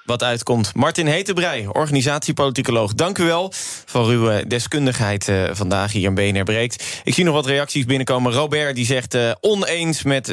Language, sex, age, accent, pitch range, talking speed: Dutch, male, 20-39, Dutch, 115-145 Hz, 165 wpm